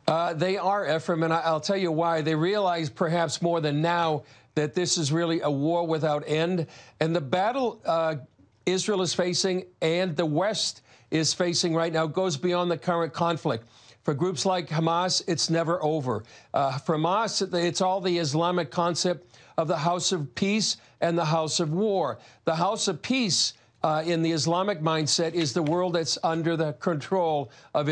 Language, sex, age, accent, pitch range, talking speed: English, male, 50-69, American, 155-180 Hz, 180 wpm